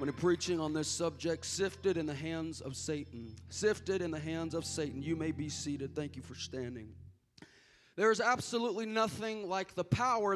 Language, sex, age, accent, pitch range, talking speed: English, male, 30-49, American, 205-260 Hz, 190 wpm